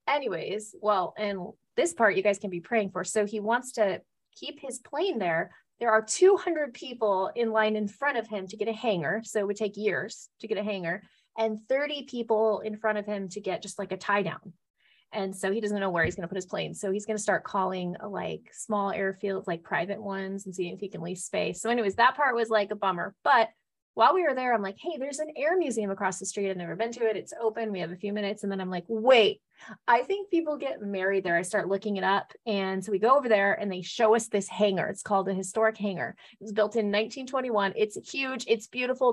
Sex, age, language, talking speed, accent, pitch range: female, 30-49, English, 250 wpm, American, 195-235 Hz